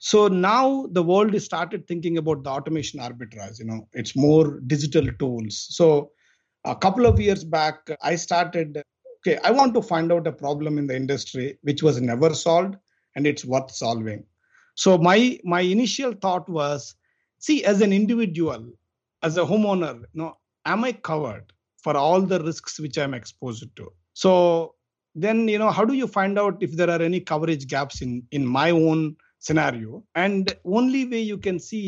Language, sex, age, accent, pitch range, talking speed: English, male, 50-69, Indian, 140-195 Hz, 180 wpm